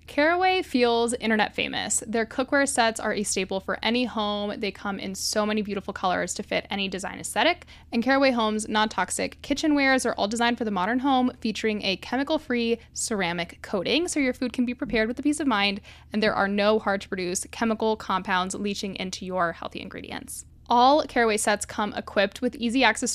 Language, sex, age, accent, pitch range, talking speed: English, female, 10-29, American, 195-245 Hz, 200 wpm